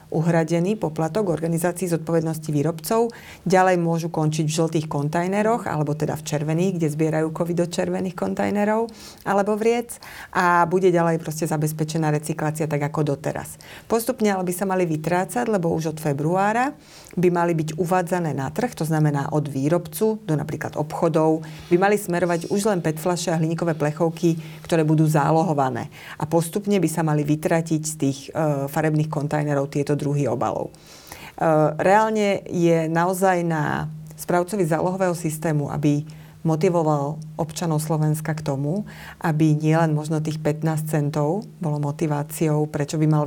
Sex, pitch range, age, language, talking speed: female, 150-175 Hz, 30-49, Slovak, 145 wpm